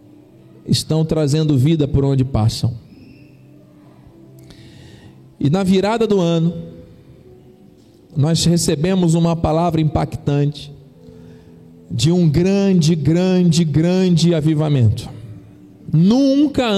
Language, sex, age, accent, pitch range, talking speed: Portuguese, male, 40-59, Brazilian, 130-170 Hz, 80 wpm